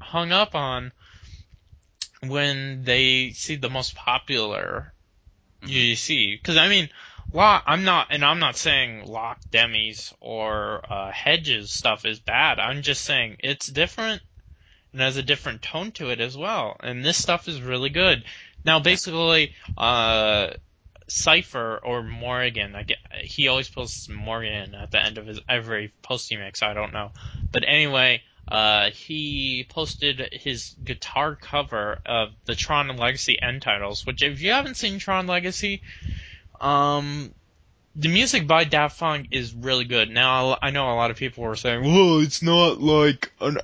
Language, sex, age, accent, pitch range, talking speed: English, male, 20-39, American, 110-145 Hz, 160 wpm